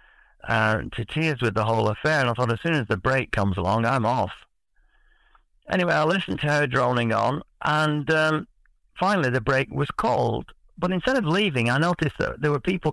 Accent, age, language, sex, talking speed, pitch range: British, 50-69, English, male, 200 wpm, 115-150 Hz